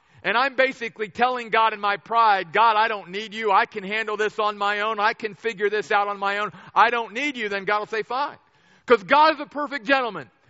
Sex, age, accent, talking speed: male, 50-69, American, 245 wpm